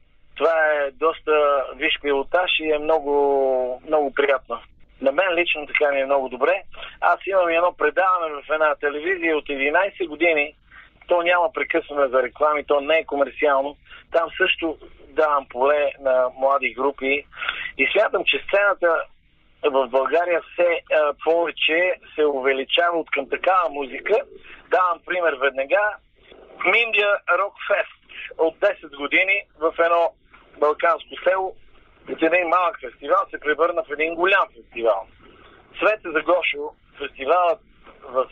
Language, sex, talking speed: Bulgarian, male, 135 wpm